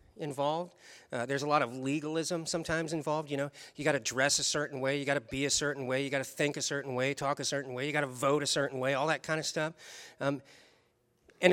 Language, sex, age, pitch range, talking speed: English, male, 40-59, 135-160 Hz, 255 wpm